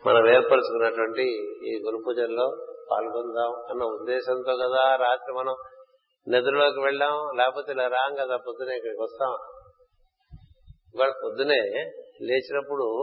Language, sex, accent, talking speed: Telugu, male, native, 105 wpm